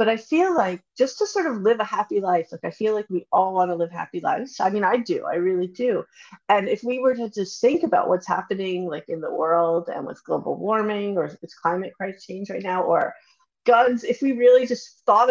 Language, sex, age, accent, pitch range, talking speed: English, female, 30-49, American, 185-295 Hz, 240 wpm